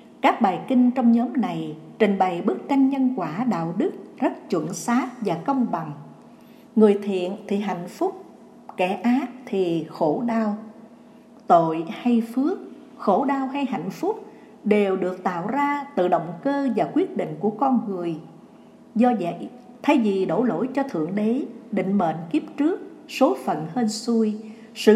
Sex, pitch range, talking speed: female, 195-255 Hz, 165 wpm